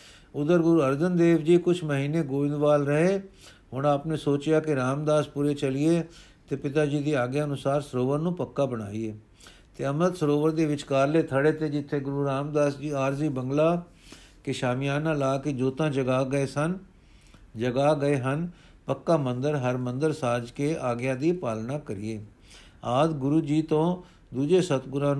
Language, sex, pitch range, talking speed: Punjabi, male, 135-160 Hz, 155 wpm